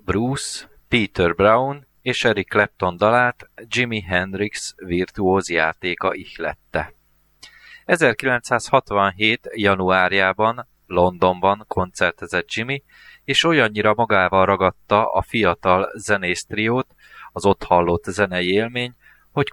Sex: male